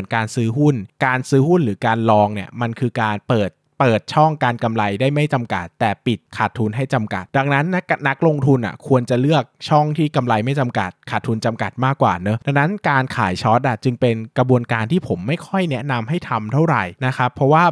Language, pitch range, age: Thai, 110-140 Hz, 20-39